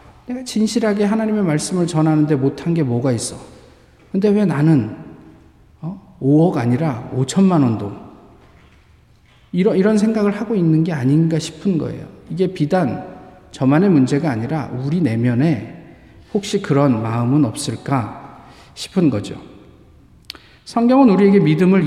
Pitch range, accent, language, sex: 135-205 Hz, native, Korean, male